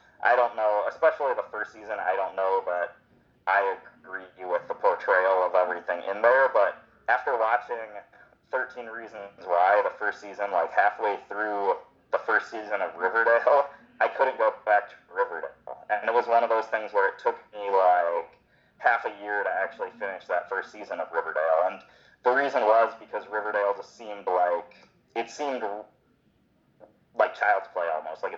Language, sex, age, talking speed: English, male, 30-49, 175 wpm